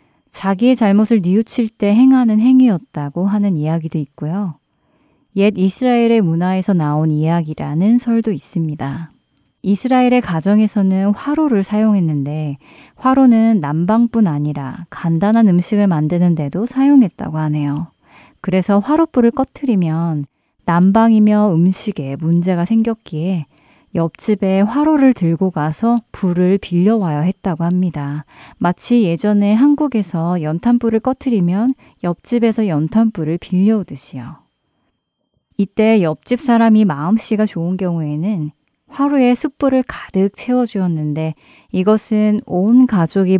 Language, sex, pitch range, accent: Korean, female, 165-225 Hz, native